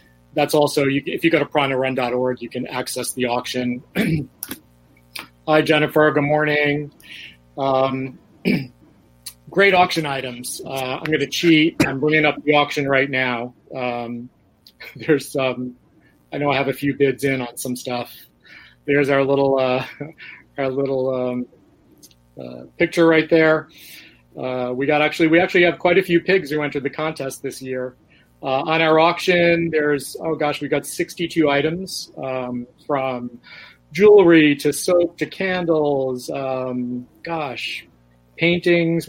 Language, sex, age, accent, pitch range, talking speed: English, male, 30-49, American, 125-155 Hz, 145 wpm